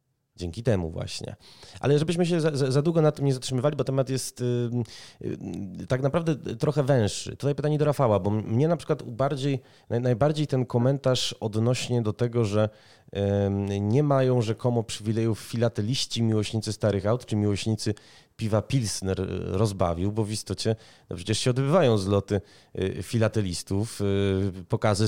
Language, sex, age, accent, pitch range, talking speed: Polish, male, 30-49, native, 100-130 Hz, 140 wpm